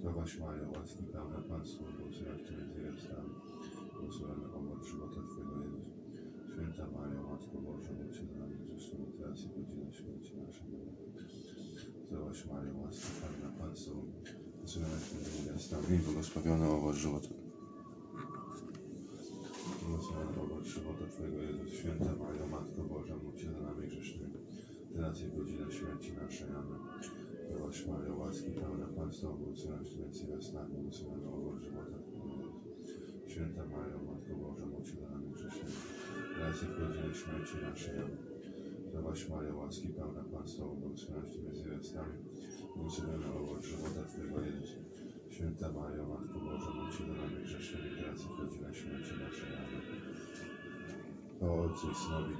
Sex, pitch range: male, 75-85 Hz